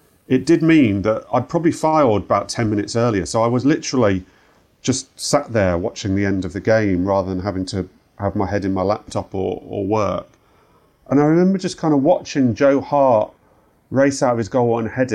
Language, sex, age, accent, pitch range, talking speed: English, male, 40-59, British, 105-145 Hz, 210 wpm